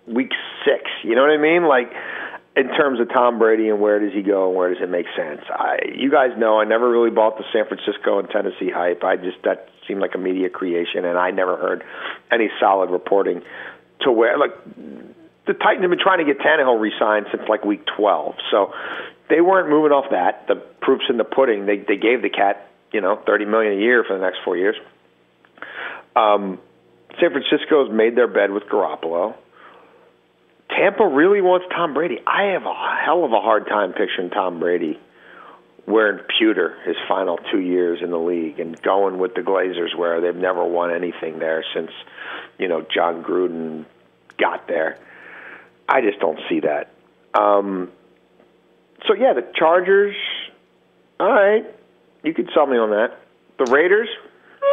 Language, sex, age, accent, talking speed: English, male, 50-69, American, 185 wpm